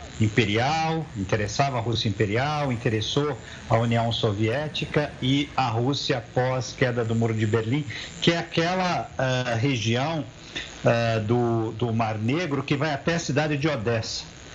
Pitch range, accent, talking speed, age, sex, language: 115-150 Hz, Brazilian, 135 wpm, 50-69, male, Portuguese